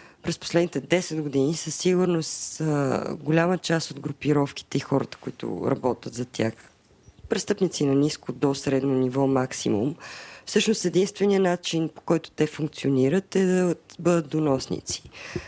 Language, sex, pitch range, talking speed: Bulgarian, female, 140-185 Hz, 130 wpm